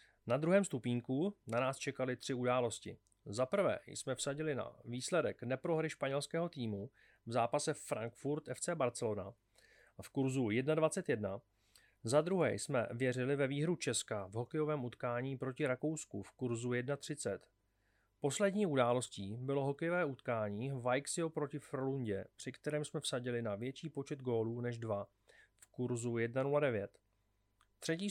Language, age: Czech, 30-49